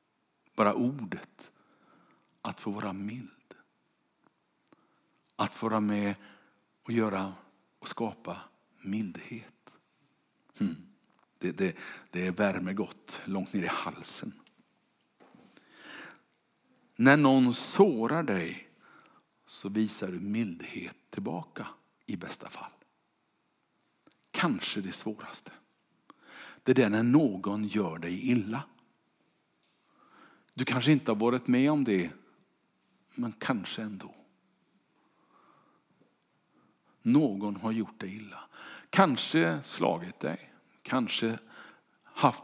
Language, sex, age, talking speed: Swedish, male, 60-79, 95 wpm